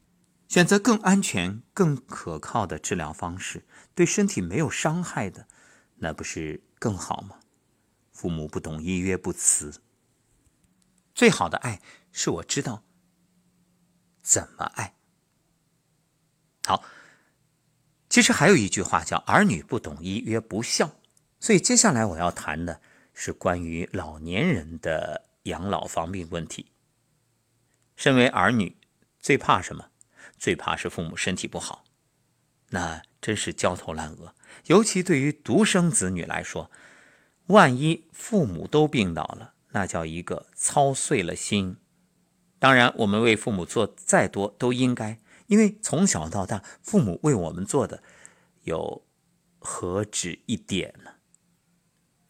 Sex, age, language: male, 50-69, Chinese